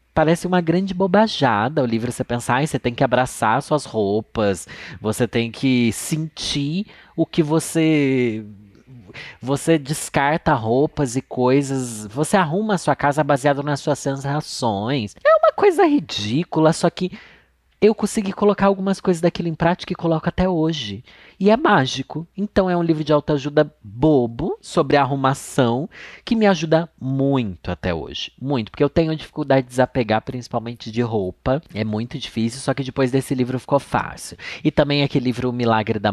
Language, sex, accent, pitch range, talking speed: Portuguese, male, Brazilian, 110-160 Hz, 165 wpm